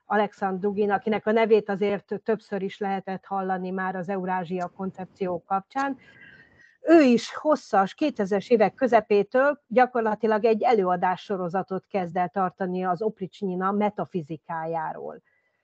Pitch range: 195-235 Hz